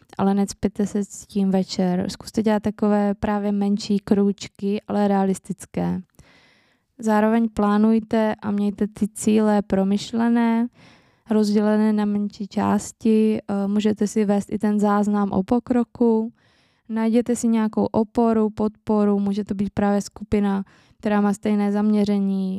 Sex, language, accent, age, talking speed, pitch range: female, Czech, native, 20-39, 125 wpm, 200-215 Hz